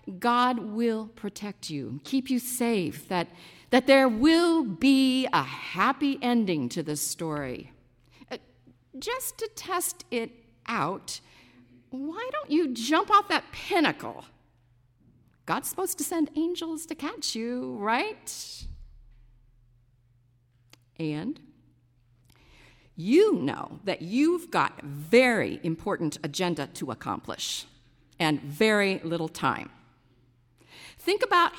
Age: 50-69